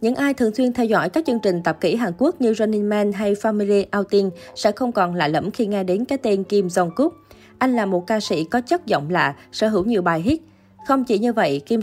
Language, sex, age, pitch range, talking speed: Vietnamese, female, 20-39, 185-235 Hz, 260 wpm